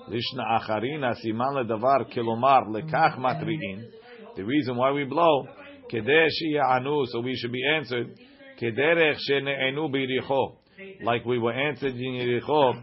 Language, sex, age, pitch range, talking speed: English, male, 40-59, 120-150 Hz, 60 wpm